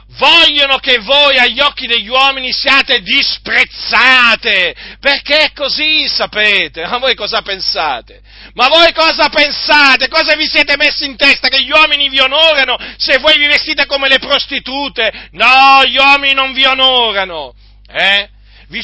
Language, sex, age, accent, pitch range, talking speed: Italian, male, 40-59, native, 180-265 Hz, 150 wpm